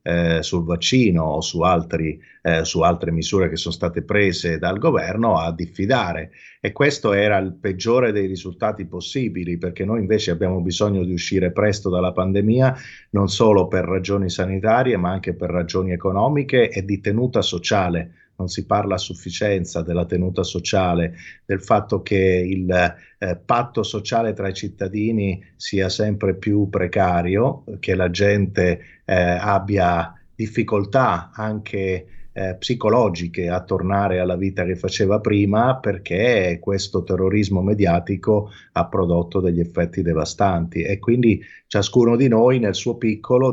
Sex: male